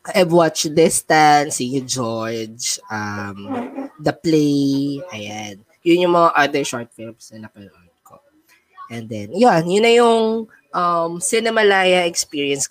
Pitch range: 125-170 Hz